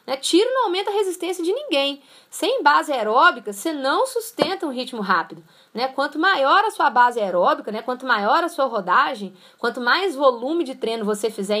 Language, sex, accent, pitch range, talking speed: Portuguese, female, Brazilian, 230-340 Hz, 185 wpm